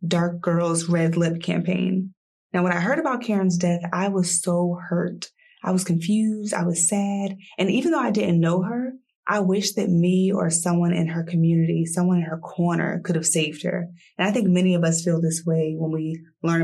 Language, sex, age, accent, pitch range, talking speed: English, female, 20-39, American, 170-190 Hz, 210 wpm